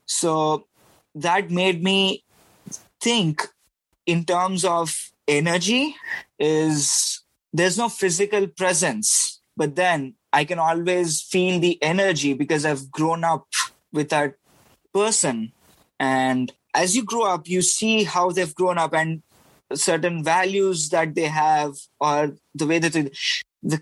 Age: 20-39